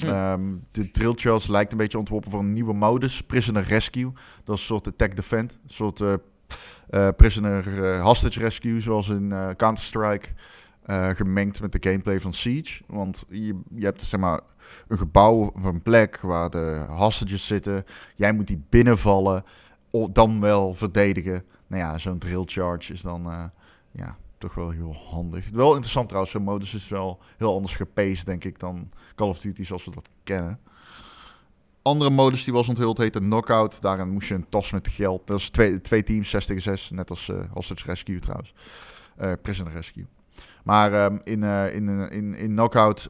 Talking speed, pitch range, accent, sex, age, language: 180 wpm, 95-110 Hz, Dutch, male, 20-39, Dutch